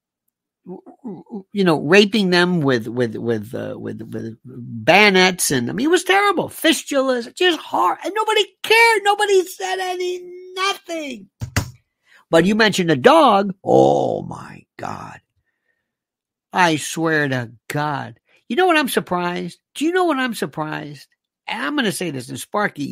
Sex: male